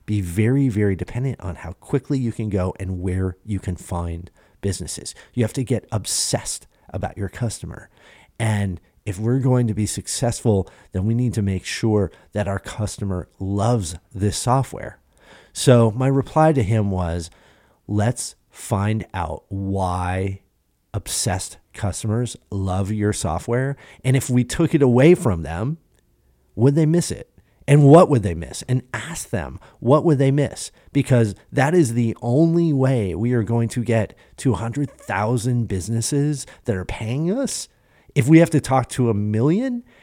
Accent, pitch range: American, 100-130 Hz